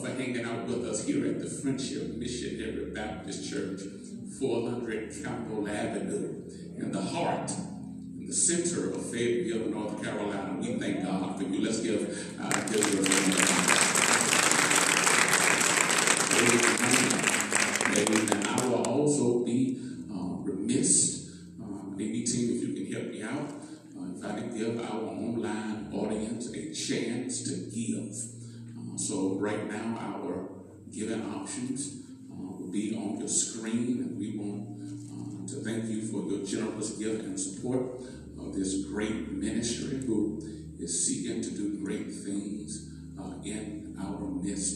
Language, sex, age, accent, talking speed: English, male, 50-69, American, 140 wpm